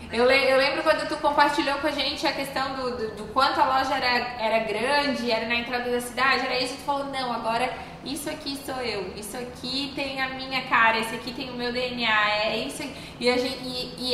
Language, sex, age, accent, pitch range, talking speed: Portuguese, female, 10-29, Brazilian, 235-280 Hz, 230 wpm